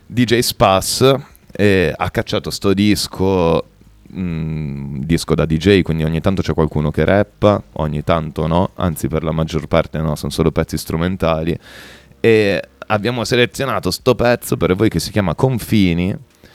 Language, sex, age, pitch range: Italian, male, 30-49, 80-105 Hz